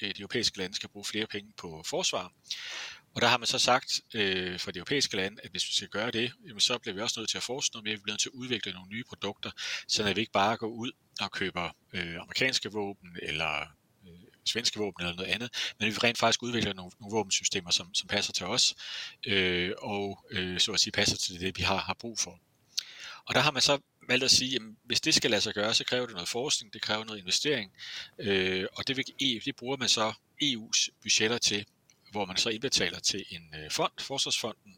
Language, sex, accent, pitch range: Danish, male, native, 95-120 Hz